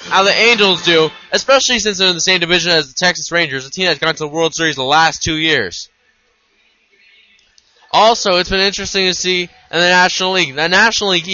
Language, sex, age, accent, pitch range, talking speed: English, male, 20-39, American, 155-190 Hz, 210 wpm